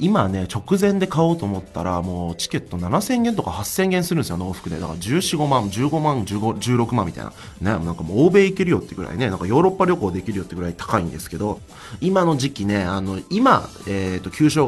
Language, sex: Chinese, male